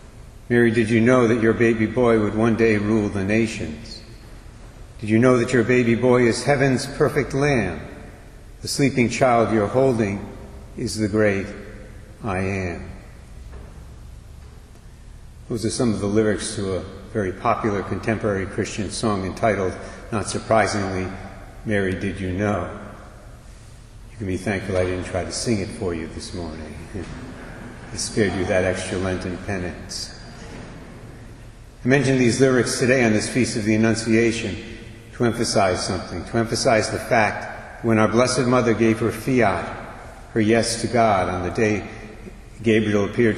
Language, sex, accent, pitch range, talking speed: English, male, American, 100-115 Hz, 150 wpm